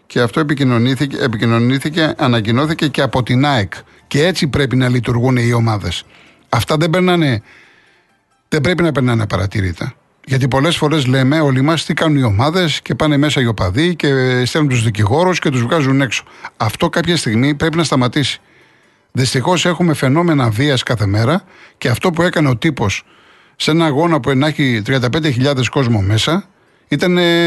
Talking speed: 160 wpm